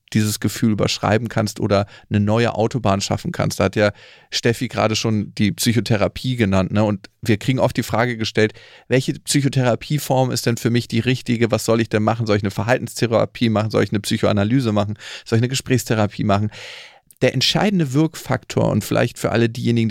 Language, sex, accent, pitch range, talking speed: German, male, German, 105-130 Hz, 185 wpm